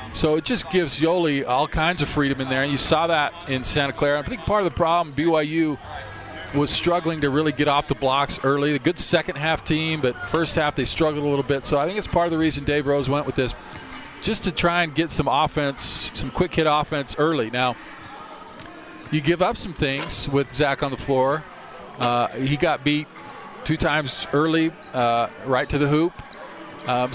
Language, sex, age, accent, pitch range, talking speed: English, male, 40-59, American, 130-155 Hz, 210 wpm